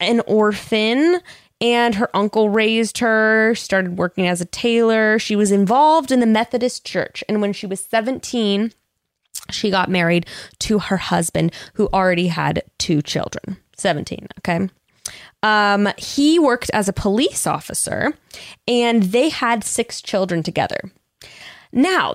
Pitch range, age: 170-220 Hz, 20-39